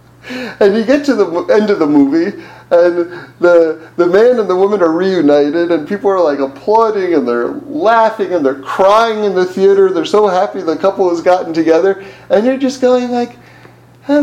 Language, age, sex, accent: English, 40-59, male, American